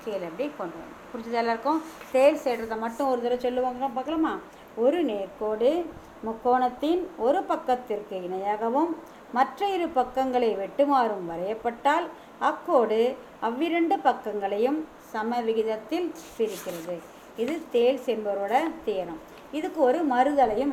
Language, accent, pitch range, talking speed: Tamil, native, 210-295 Hz, 95 wpm